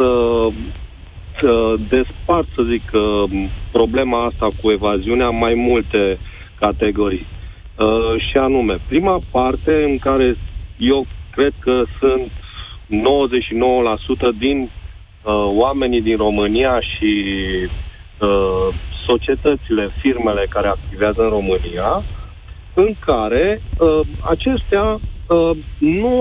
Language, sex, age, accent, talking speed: Romanian, male, 40-59, native, 85 wpm